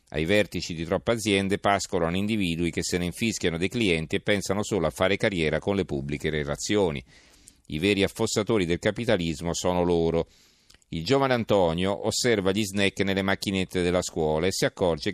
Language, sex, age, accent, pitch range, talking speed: Italian, male, 40-59, native, 85-105 Hz, 170 wpm